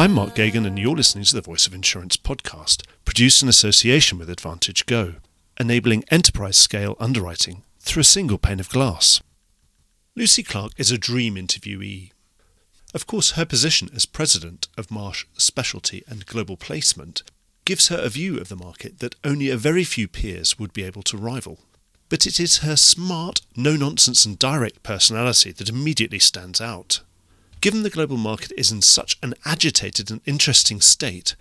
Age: 40-59